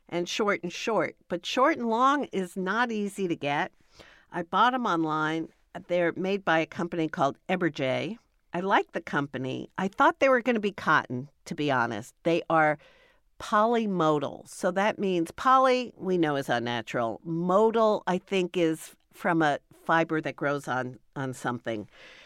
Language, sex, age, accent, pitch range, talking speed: English, female, 50-69, American, 165-220 Hz, 165 wpm